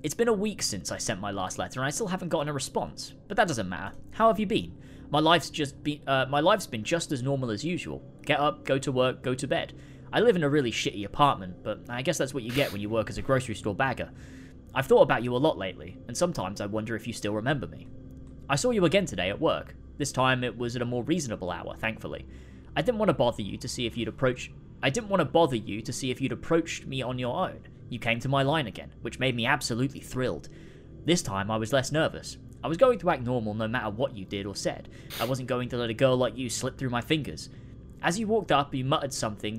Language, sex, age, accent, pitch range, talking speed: English, male, 20-39, British, 115-150 Hz, 270 wpm